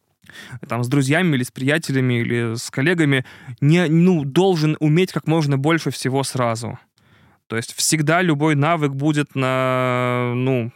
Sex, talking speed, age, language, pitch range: male, 145 wpm, 20-39, Russian, 140-170 Hz